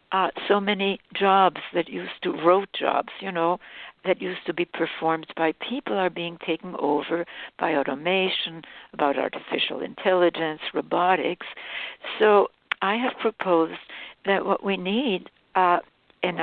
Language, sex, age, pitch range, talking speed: English, female, 60-79, 165-195 Hz, 140 wpm